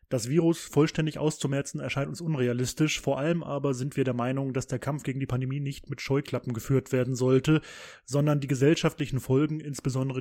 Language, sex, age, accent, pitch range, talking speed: German, male, 20-39, German, 125-145 Hz, 180 wpm